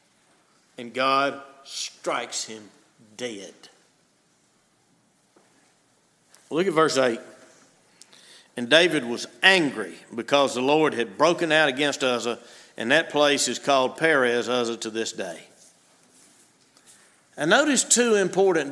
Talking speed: 110 wpm